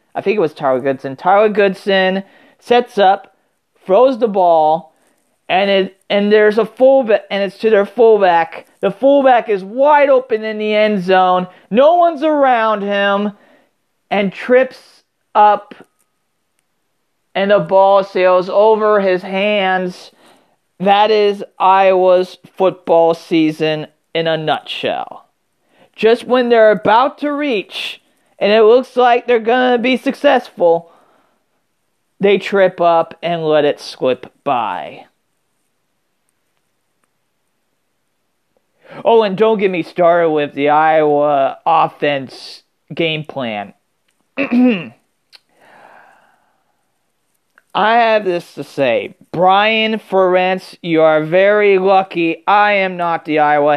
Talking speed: 120 wpm